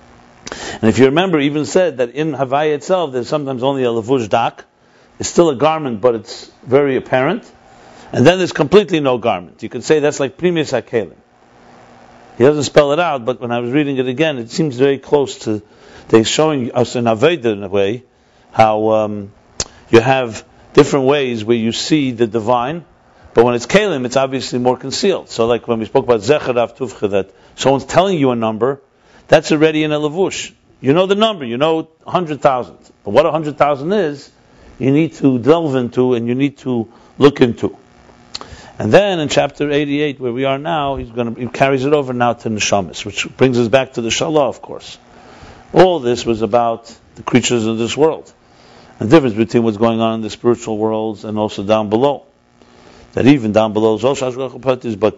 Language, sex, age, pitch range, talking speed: English, male, 50-69, 110-145 Hz, 190 wpm